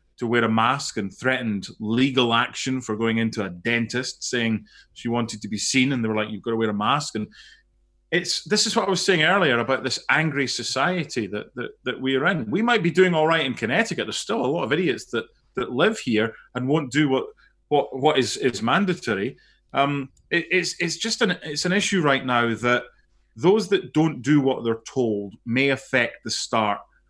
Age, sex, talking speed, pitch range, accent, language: 30-49, male, 215 wpm, 115-170 Hz, British, English